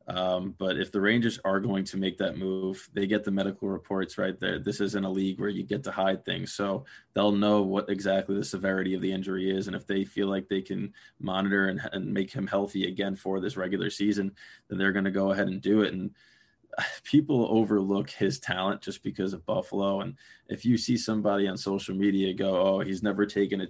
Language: English